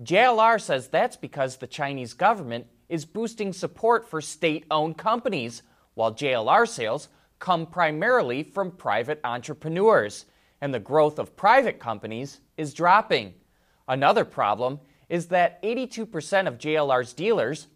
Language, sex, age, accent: English, male, 30-49, American